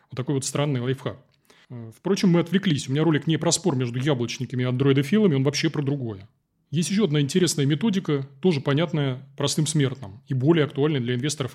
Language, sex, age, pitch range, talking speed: Russian, male, 30-49, 130-165 Hz, 185 wpm